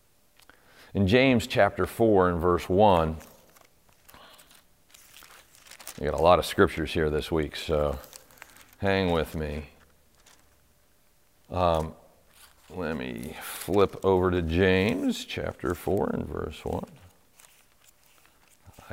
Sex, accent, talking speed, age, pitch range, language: male, American, 100 wpm, 50-69, 80-110 Hz, English